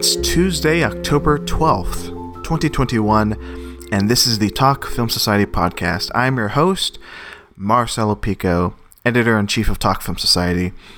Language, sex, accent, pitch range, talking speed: English, male, American, 100-145 Hz, 125 wpm